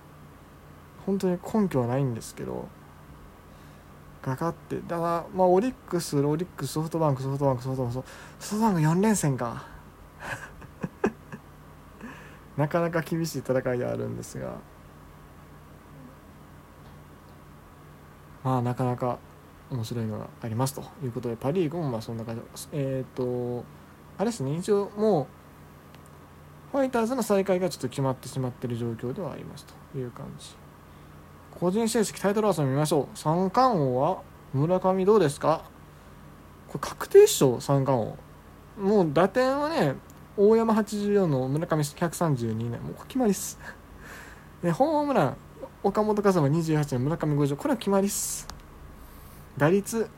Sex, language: male, Japanese